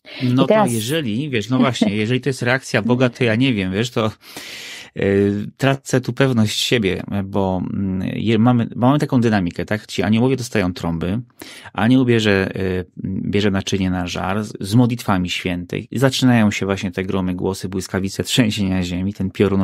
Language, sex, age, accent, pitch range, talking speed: Polish, male, 30-49, native, 95-125 Hz, 170 wpm